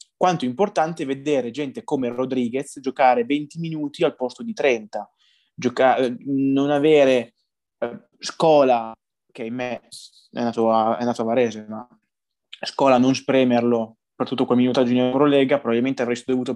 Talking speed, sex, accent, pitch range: 150 wpm, male, native, 120-140 Hz